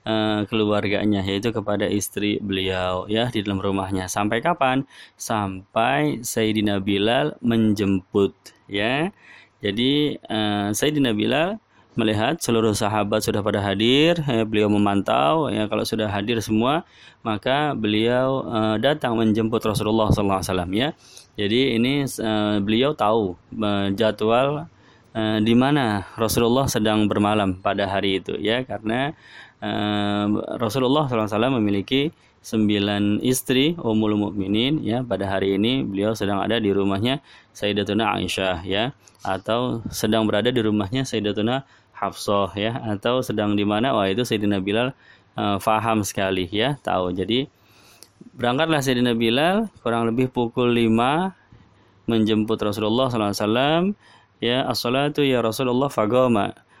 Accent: native